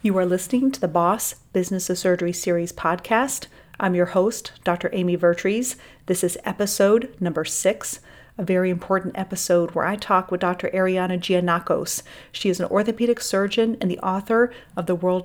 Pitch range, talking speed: 175-200 Hz, 175 wpm